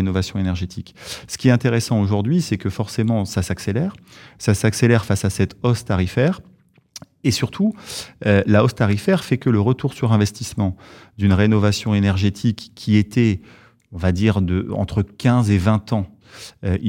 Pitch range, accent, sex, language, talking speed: 95-115 Hz, French, male, French, 160 wpm